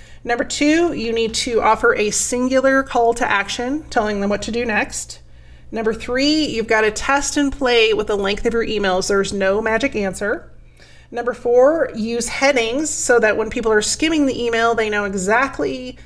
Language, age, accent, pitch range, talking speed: English, 30-49, American, 210-250 Hz, 185 wpm